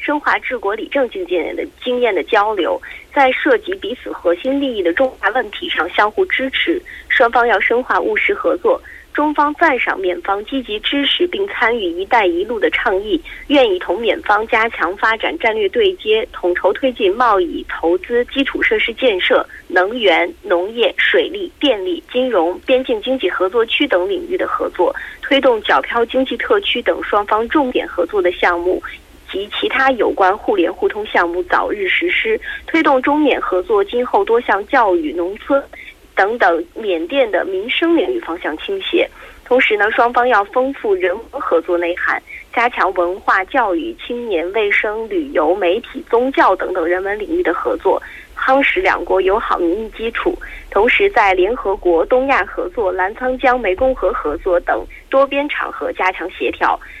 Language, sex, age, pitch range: Korean, female, 20-39, 235-380 Hz